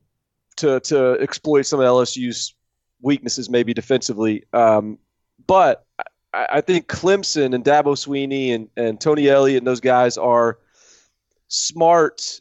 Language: English